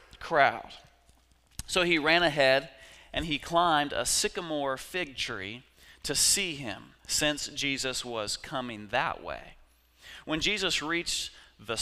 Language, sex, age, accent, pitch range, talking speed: English, male, 30-49, American, 115-155 Hz, 125 wpm